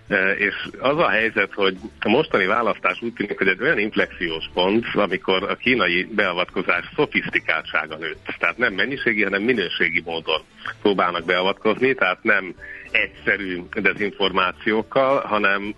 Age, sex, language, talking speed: 60-79, male, Hungarian, 130 wpm